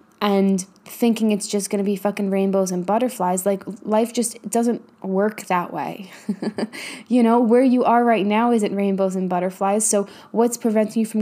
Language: English